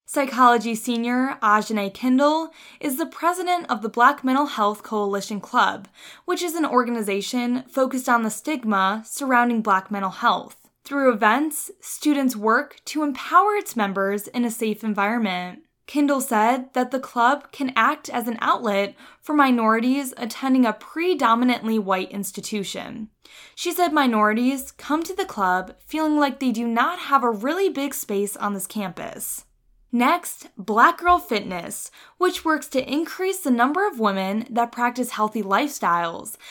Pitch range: 215-295 Hz